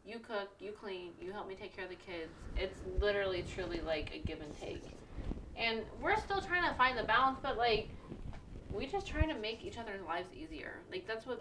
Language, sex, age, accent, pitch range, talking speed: English, female, 20-39, American, 170-210 Hz, 220 wpm